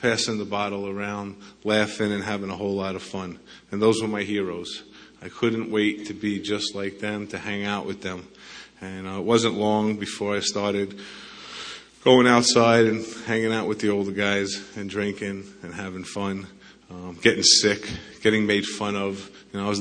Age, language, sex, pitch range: 30-49, English, male, 100-115 Hz